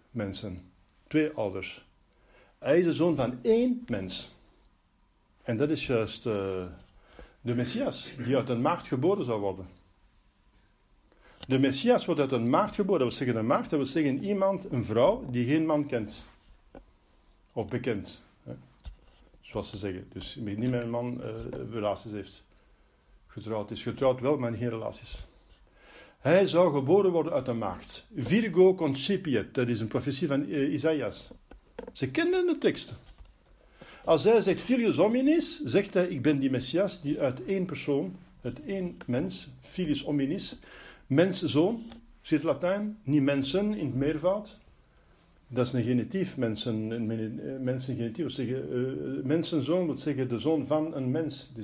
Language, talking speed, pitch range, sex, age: Dutch, 160 wpm, 115-170 Hz, male, 50-69